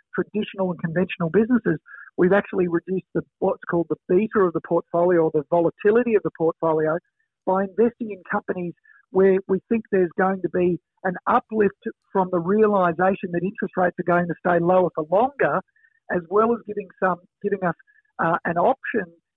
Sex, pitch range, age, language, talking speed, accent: male, 175-215 Hz, 50-69, English, 175 wpm, Australian